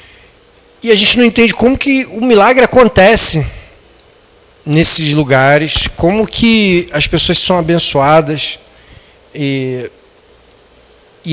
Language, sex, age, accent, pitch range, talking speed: Portuguese, male, 40-59, Brazilian, 155-215 Hz, 105 wpm